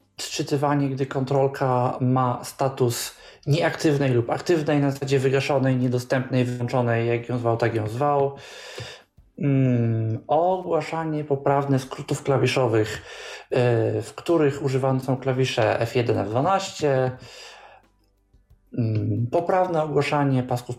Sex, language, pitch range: male, Polish, 120-145 Hz